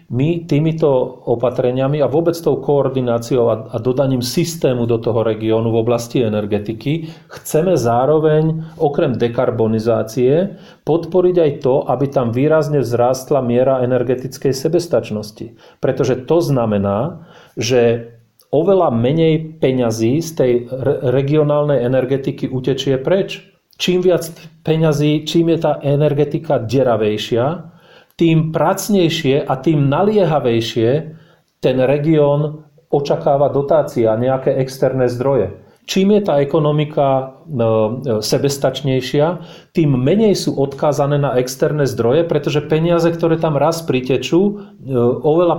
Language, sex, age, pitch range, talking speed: Slovak, male, 40-59, 125-160 Hz, 110 wpm